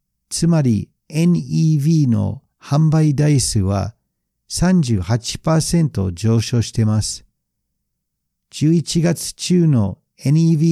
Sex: male